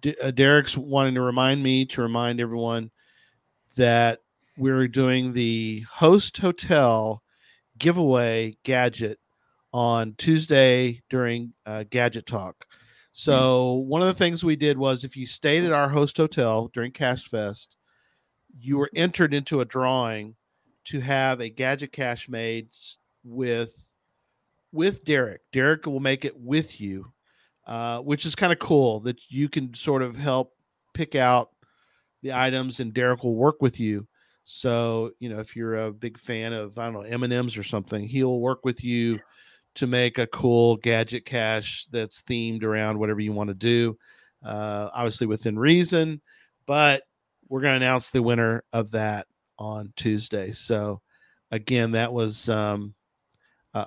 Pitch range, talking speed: 115-135 Hz, 155 wpm